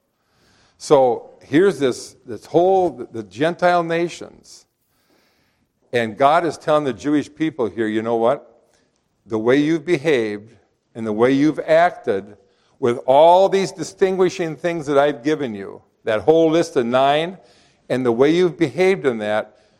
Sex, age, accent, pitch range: male, 50-69, American, 120-160 Hz